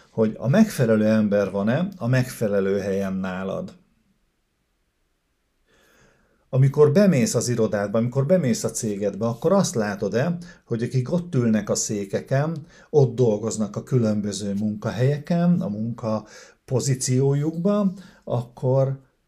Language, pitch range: Hungarian, 100-135 Hz